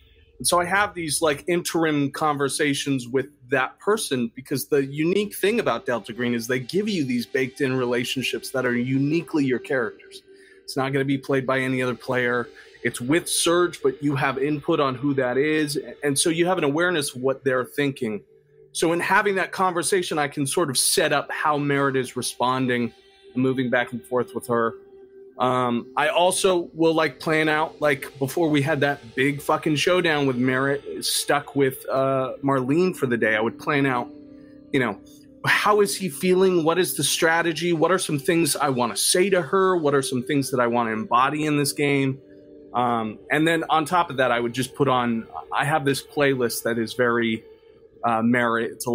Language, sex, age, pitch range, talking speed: English, male, 30-49, 125-170 Hz, 205 wpm